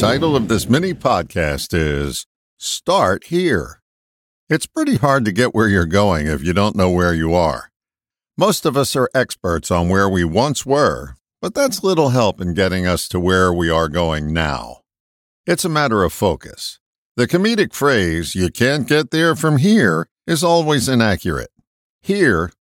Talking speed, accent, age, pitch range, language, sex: 170 wpm, American, 50-69, 90-140 Hz, English, male